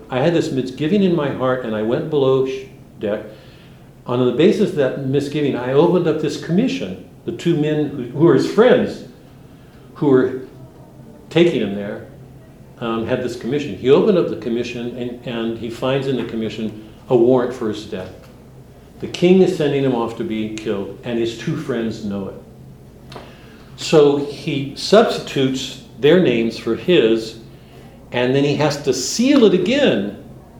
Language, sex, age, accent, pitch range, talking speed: English, male, 60-79, American, 115-145 Hz, 170 wpm